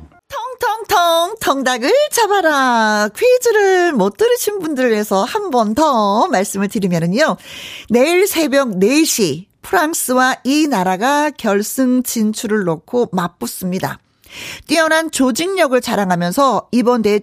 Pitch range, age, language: 210-320 Hz, 40-59, Korean